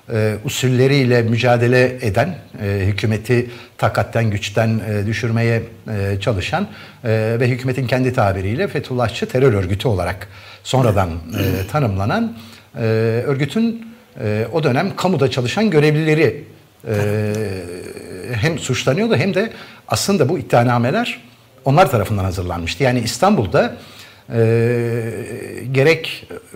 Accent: native